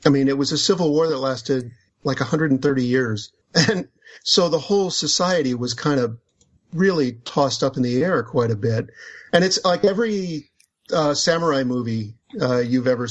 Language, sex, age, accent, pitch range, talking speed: English, male, 50-69, American, 120-150 Hz, 180 wpm